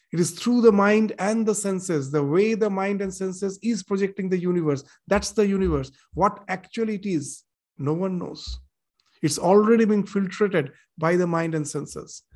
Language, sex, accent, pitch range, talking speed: English, male, Indian, 155-190 Hz, 180 wpm